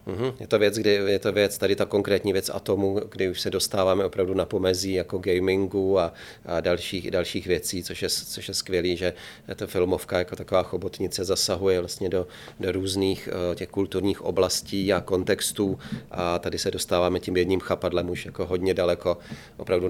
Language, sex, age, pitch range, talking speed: Czech, male, 30-49, 85-95 Hz, 180 wpm